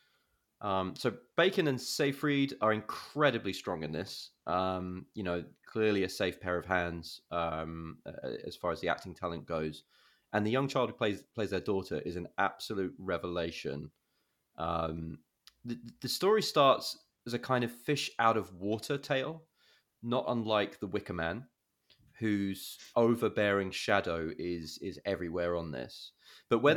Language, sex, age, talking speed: English, male, 20-39, 155 wpm